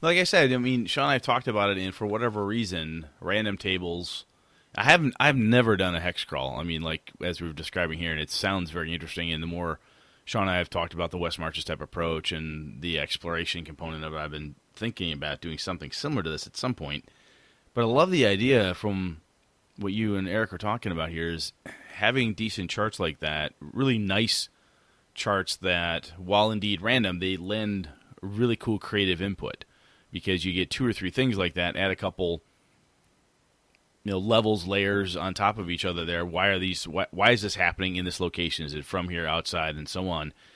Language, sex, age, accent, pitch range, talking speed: English, male, 30-49, American, 85-105 Hz, 210 wpm